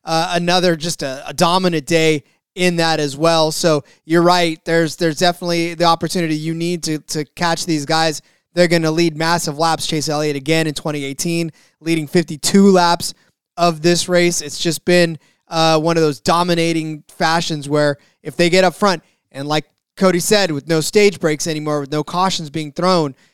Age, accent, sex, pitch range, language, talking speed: 20-39, American, male, 150-175 Hz, English, 185 wpm